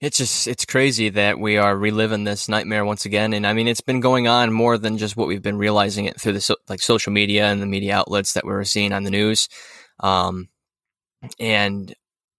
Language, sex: English, male